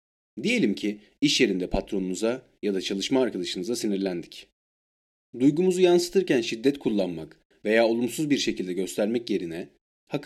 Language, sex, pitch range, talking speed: Turkish, male, 95-135 Hz, 125 wpm